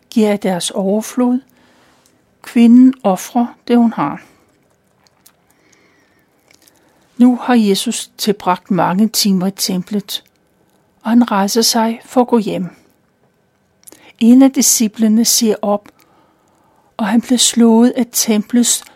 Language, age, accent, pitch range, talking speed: Danish, 60-79, native, 205-240 Hz, 110 wpm